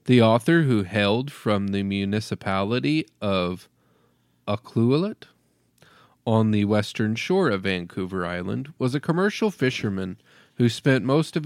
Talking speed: 125 wpm